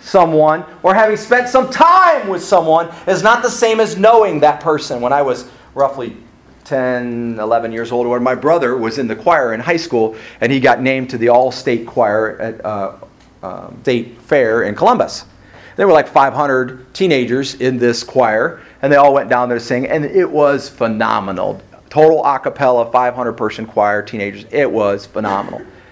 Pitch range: 120-170 Hz